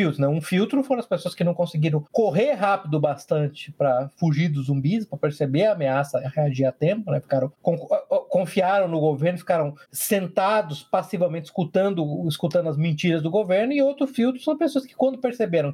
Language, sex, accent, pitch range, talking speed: Portuguese, male, Brazilian, 150-210 Hz, 170 wpm